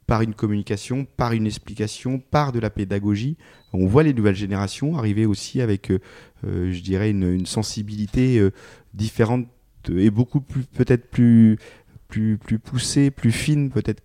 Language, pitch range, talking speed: French, 95-120 Hz, 160 wpm